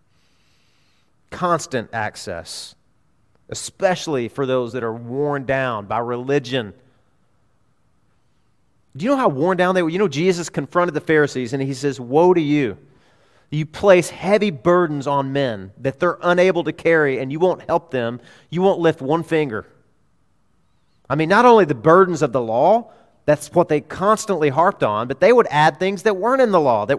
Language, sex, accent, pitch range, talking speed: English, male, American, 125-175 Hz, 175 wpm